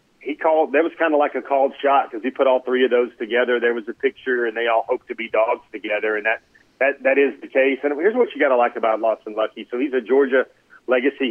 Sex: male